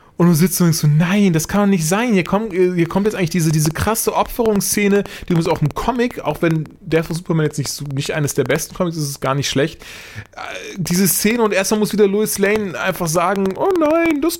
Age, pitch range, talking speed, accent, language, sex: 20-39, 140-195 Hz, 245 wpm, German, German, male